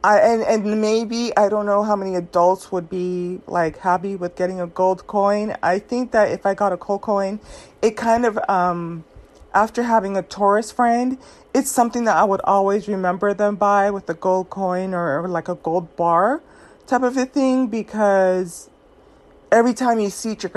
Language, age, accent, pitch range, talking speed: English, 30-49, American, 185-225 Hz, 195 wpm